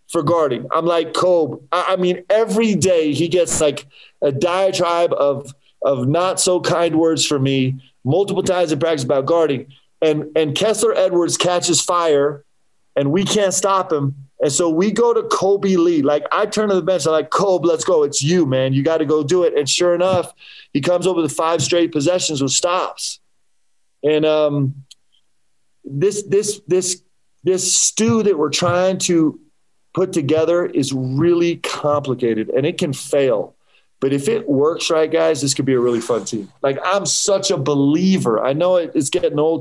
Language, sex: English, male